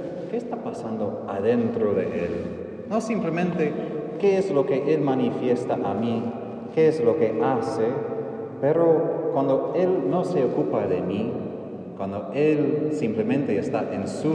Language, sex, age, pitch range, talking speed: Spanish, male, 30-49, 115-185 Hz, 145 wpm